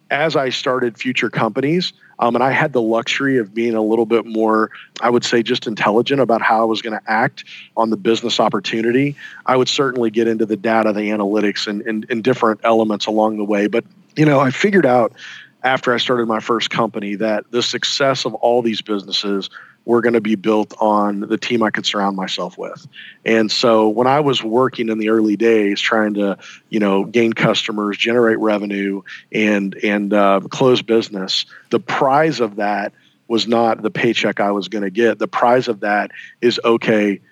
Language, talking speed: English, 200 wpm